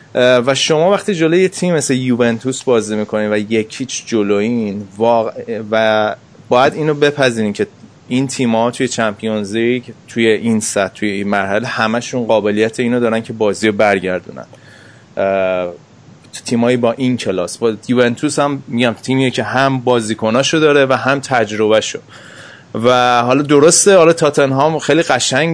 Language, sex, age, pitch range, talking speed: Persian, male, 30-49, 110-140 Hz, 145 wpm